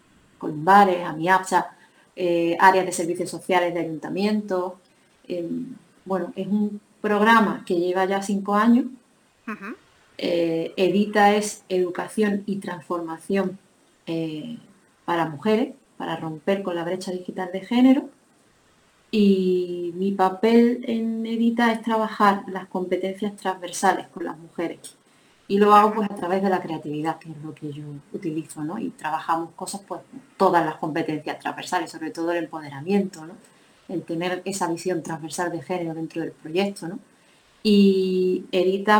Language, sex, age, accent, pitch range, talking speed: Spanish, female, 30-49, Spanish, 170-205 Hz, 140 wpm